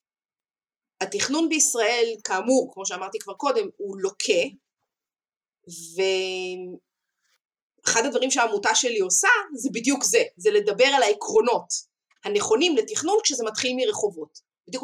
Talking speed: 110 wpm